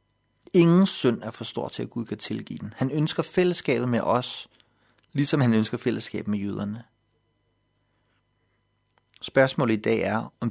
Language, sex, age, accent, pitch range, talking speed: Danish, male, 30-49, native, 110-130 Hz, 155 wpm